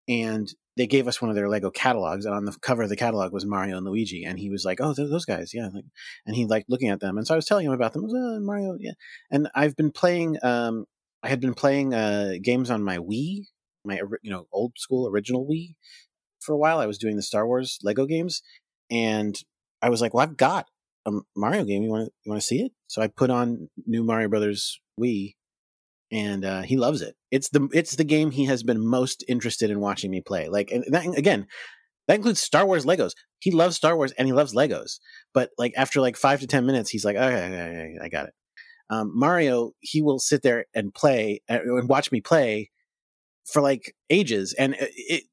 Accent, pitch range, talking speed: American, 110-150 Hz, 230 wpm